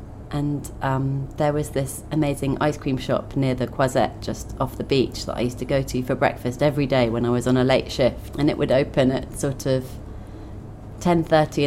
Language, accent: English, British